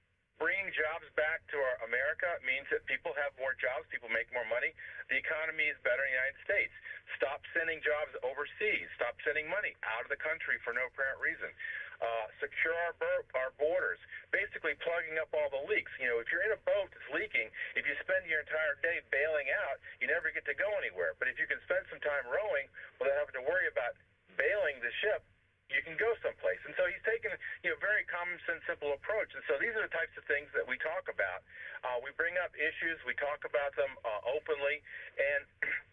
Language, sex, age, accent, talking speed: English, male, 40-59, American, 215 wpm